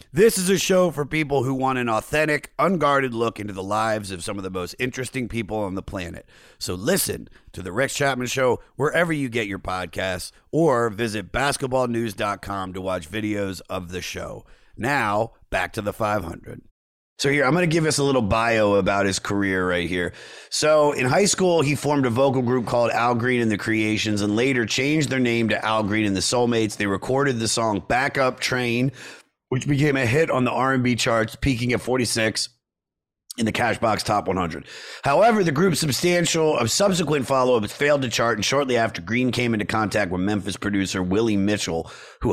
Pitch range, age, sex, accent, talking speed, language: 105-135 Hz, 30-49, male, American, 195 wpm, English